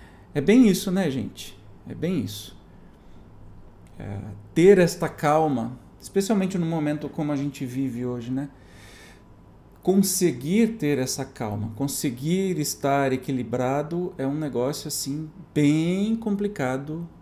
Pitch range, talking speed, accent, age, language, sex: 120-165 Hz, 120 wpm, Brazilian, 40-59, Portuguese, male